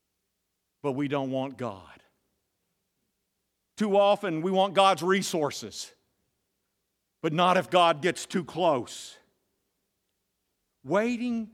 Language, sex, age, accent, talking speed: English, male, 50-69, American, 100 wpm